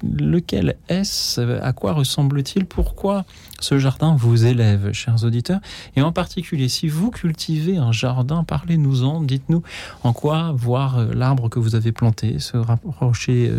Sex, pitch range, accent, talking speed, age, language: male, 115-160 Hz, French, 140 wpm, 40-59, French